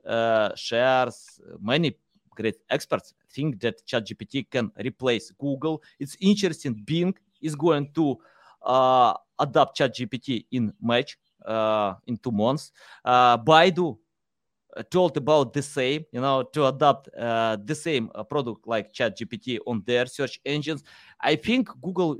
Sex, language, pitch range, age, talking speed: male, English, 120-165 Hz, 30-49, 130 wpm